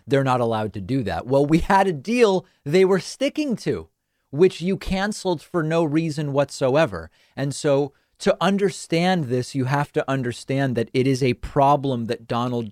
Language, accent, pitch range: English, American, 120-155 Hz